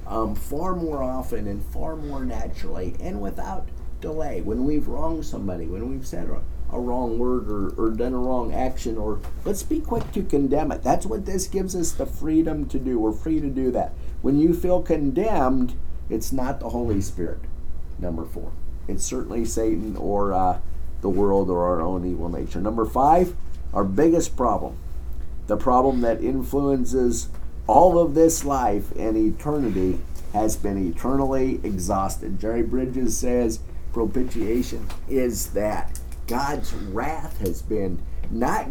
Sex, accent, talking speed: male, American, 160 wpm